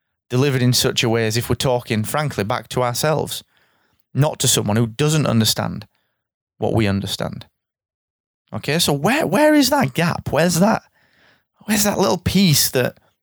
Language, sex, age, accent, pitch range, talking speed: English, male, 30-49, British, 105-145 Hz, 165 wpm